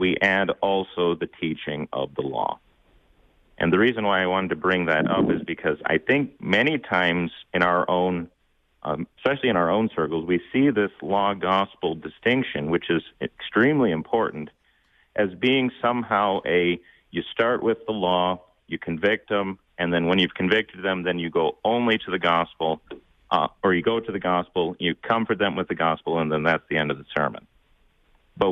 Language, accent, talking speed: English, American, 185 wpm